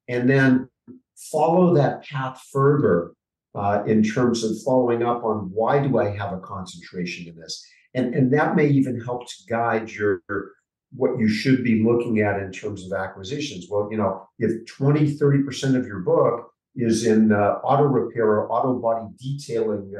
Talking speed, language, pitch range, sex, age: 180 wpm, English, 110-140 Hz, male, 50-69